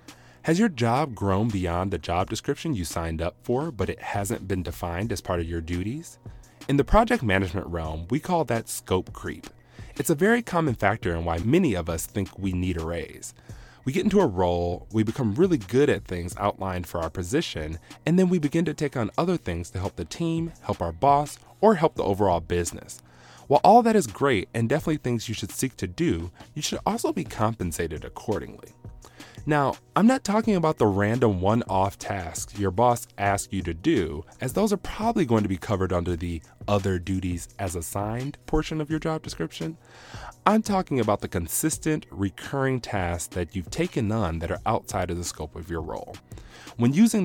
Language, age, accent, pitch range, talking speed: English, 30-49, American, 90-145 Hz, 200 wpm